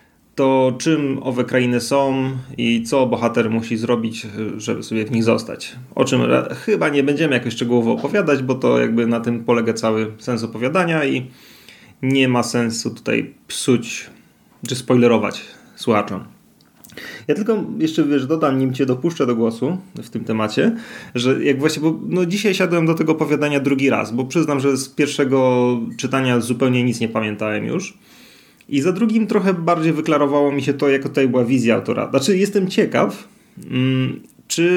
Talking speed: 160 wpm